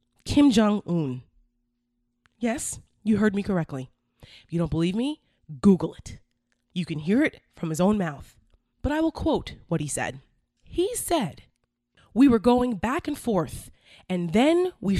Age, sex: 20-39, female